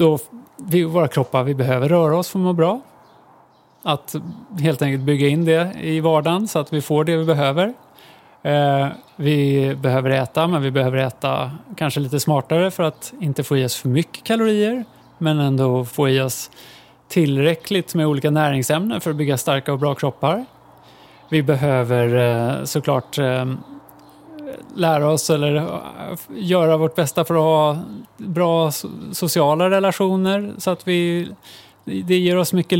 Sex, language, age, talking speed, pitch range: male, English, 30-49, 160 wpm, 140-175 Hz